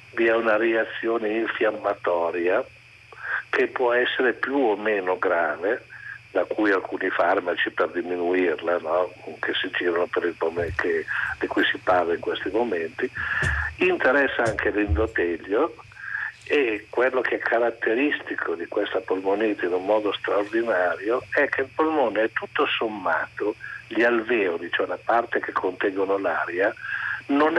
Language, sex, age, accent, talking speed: Italian, male, 60-79, native, 135 wpm